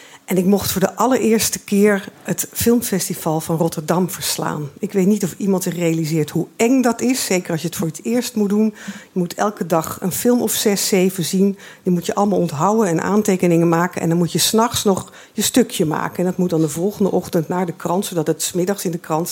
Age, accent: 50-69, Dutch